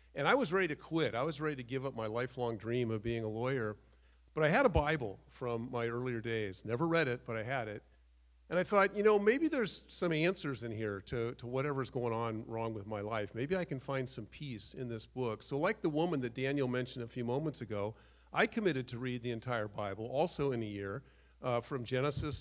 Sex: male